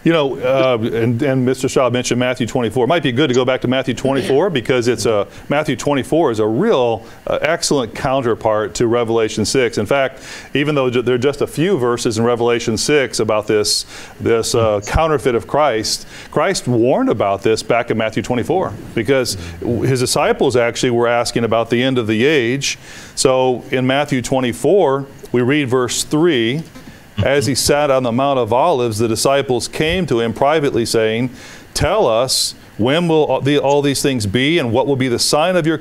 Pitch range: 120-145 Hz